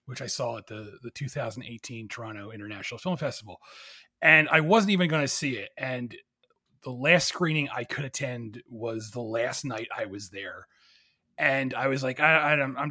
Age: 30-49